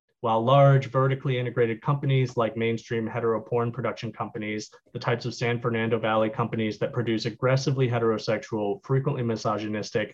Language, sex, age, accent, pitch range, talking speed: English, male, 20-39, American, 115-130 Hz, 140 wpm